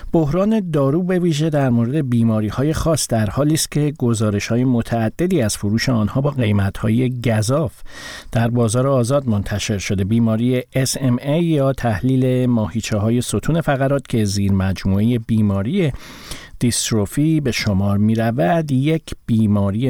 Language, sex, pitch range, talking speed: Persian, male, 110-135 Hz, 140 wpm